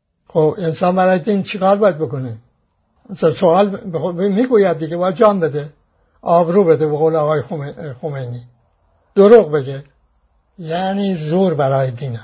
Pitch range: 155-210 Hz